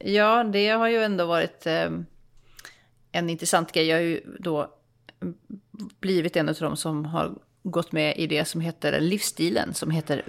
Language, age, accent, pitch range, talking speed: English, 30-49, Swedish, 160-190 Hz, 170 wpm